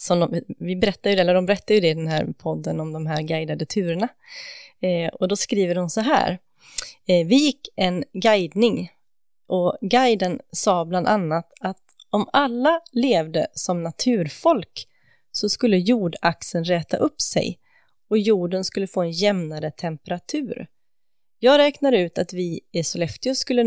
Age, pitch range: 30-49, 170-230 Hz